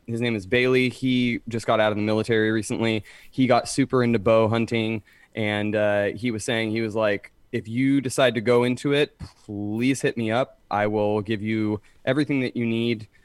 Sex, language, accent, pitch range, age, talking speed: male, English, American, 110-125 Hz, 20-39, 205 wpm